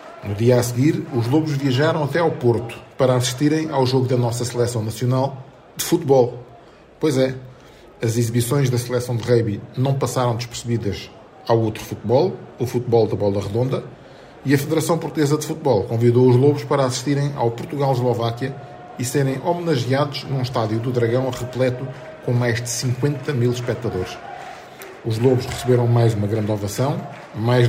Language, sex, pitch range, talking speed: Portuguese, male, 120-145 Hz, 160 wpm